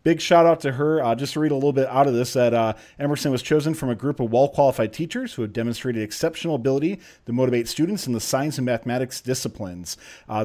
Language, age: English, 40-59